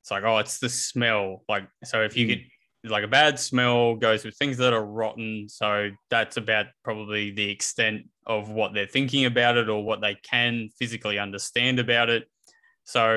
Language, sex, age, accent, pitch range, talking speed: English, male, 20-39, Australian, 110-125 Hz, 190 wpm